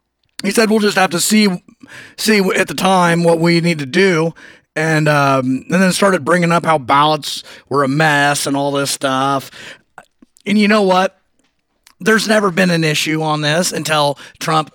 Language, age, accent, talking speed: English, 30-49, American, 185 wpm